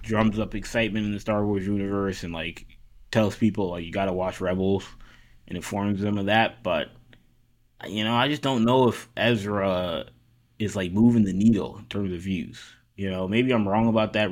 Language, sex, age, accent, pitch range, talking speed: English, male, 20-39, American, 90-115 Hz, 195 wpm